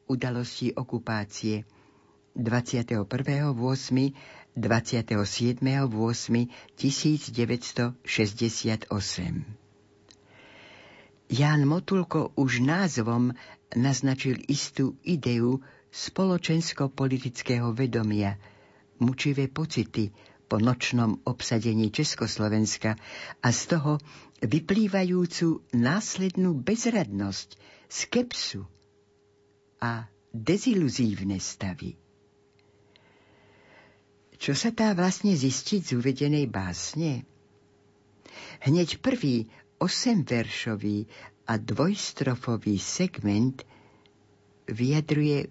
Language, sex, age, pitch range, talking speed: Slovak, female, 60-79, 105-140 Hz, 55 wpm